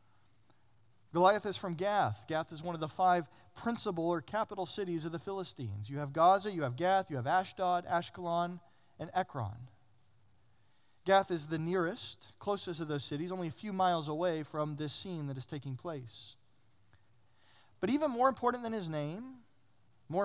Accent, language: American, English